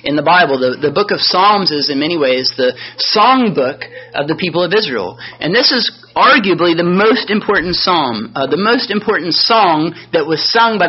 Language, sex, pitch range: English, male, 155-220 Hz